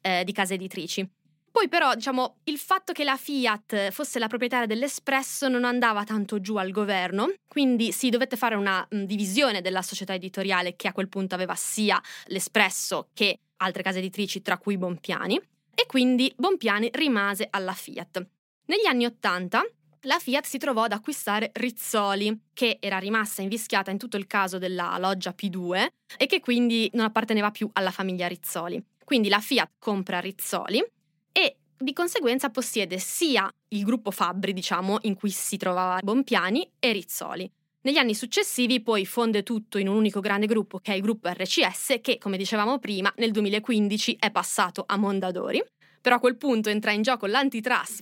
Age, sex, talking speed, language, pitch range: 20-39, female, 170 wpm, Italian, 195-245 Hz